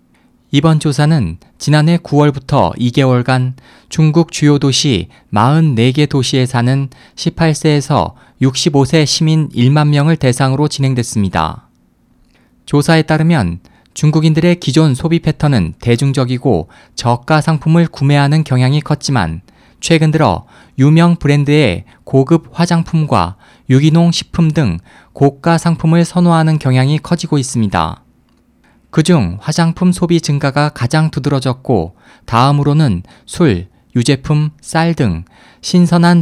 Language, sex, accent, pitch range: Korean, male, native, 125-160 Hz